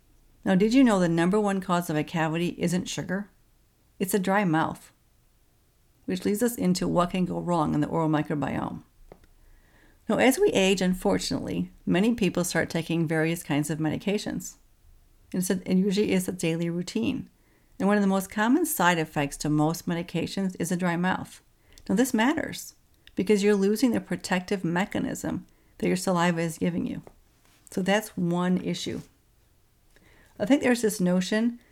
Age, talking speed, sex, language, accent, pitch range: 50-69, 165 wpm, female, English, American, 165-210 Hz